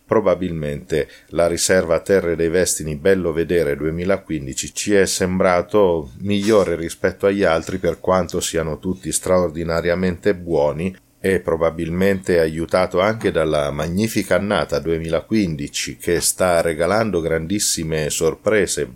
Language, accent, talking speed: Italian, native, 110 wpm